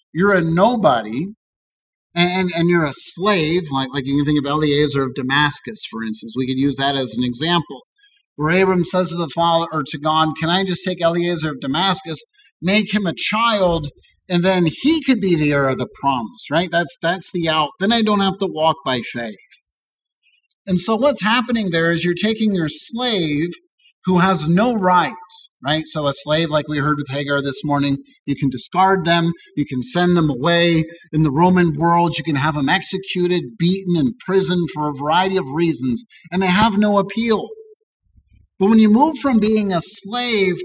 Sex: male